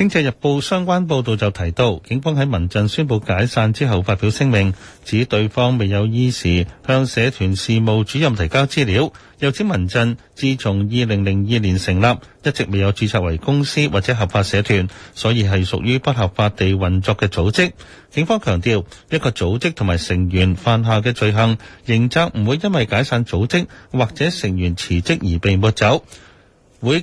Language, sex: Chinese, male